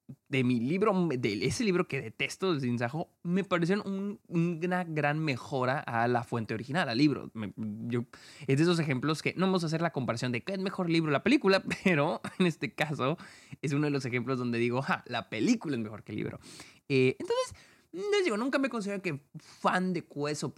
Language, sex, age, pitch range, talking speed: Spanish, male, 20-39, 125-205 Hz, 215 wpm